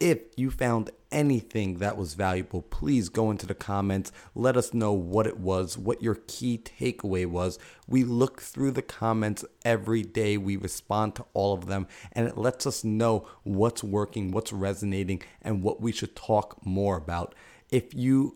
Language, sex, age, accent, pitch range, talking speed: English, male, 30-49, American, 100-115 Hz, 175 wpm